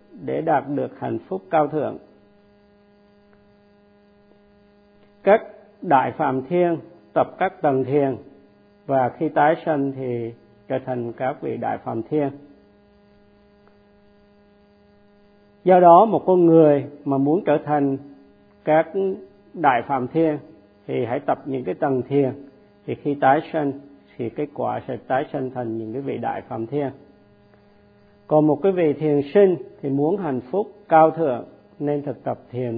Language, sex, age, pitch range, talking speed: Vietnamese, male, 50-69, 105-160 Hz, 145 wpm